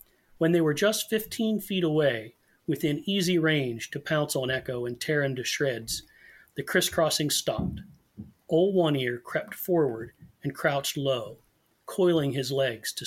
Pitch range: 130-170 Hz